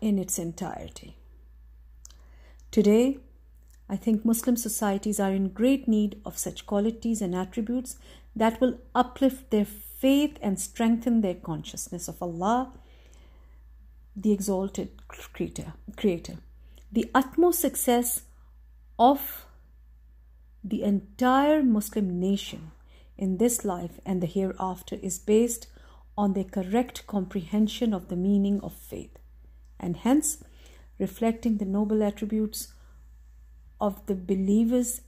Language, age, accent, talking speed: English, 50-69, Indian, 110 wpm